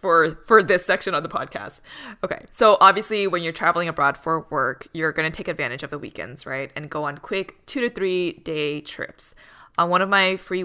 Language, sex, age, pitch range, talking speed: English, female, 20-39, 150-185 Hz, 215 wpm